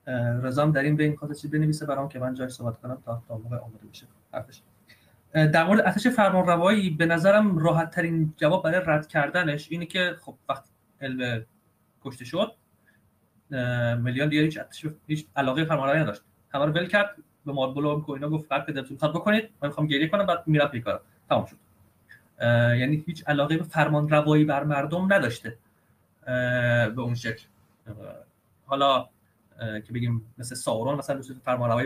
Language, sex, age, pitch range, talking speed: Persian, male, 30-49, 115-155 Hz, 160 wpm